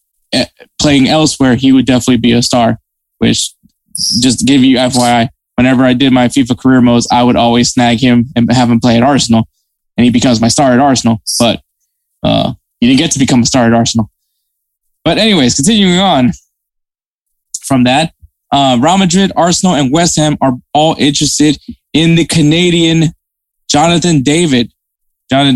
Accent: American